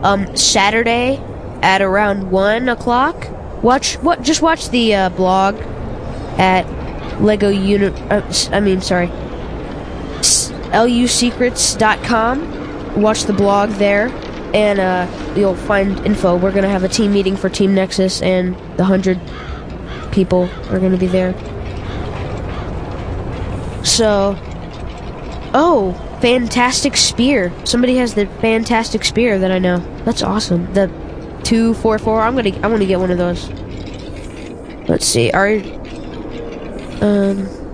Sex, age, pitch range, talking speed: female, 20-39, 160-215 Hz, 120 wpm